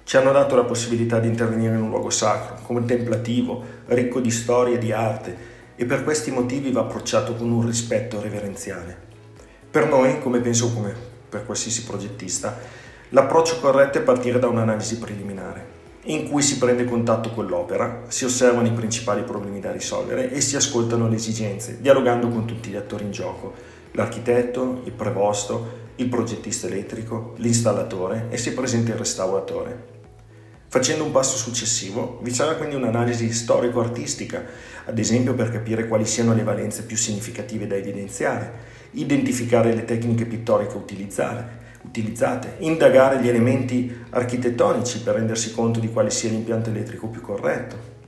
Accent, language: Italian, English